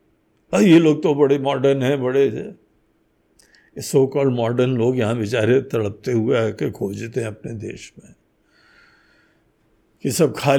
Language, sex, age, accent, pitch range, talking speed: Hindi, male, 50-69, native, 120-165 Hz, 140 wpm